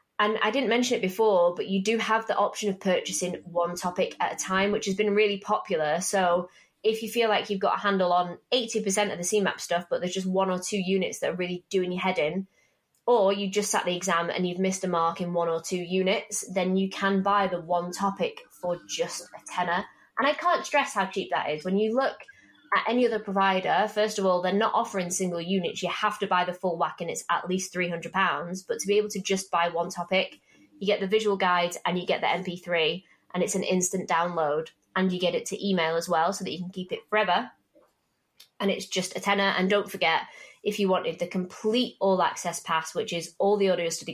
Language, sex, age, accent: English, female, 20-39, British